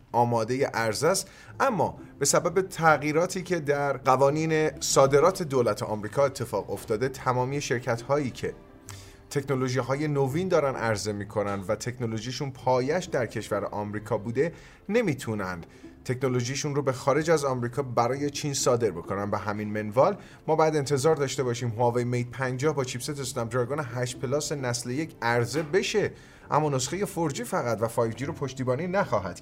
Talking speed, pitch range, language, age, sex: 145 wpm, 120-155 Hz, Persian, 30-49, male